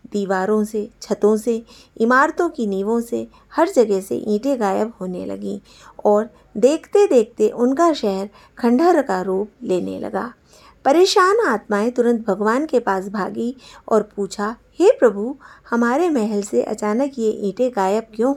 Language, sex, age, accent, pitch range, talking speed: Hindi, female, 50-69, native, 205-275 Hz, 145 wpm